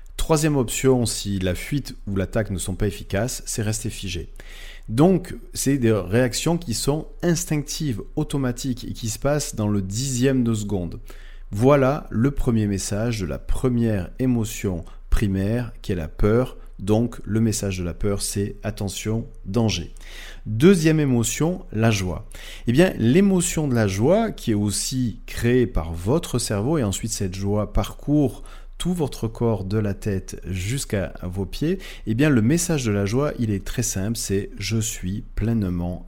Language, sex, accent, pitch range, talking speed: French, male, French, 100-130 Hz, 165 wpm